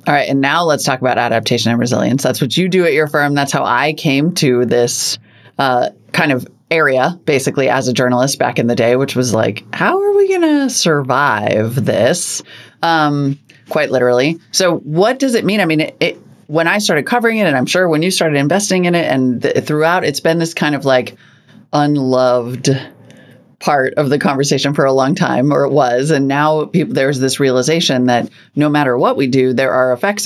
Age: 30-49